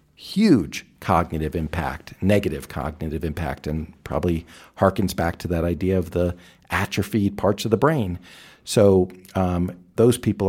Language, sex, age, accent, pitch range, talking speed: English, male, 50-69, American, 85-105 Hz, 135 wpm